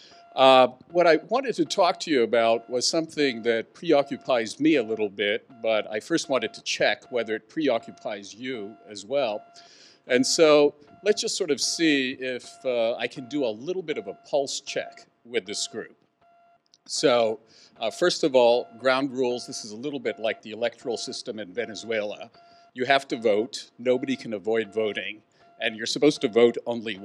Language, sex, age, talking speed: English, male, 50-69, 185 wpm